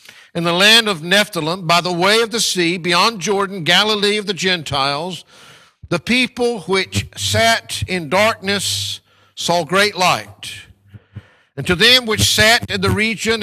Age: 60-79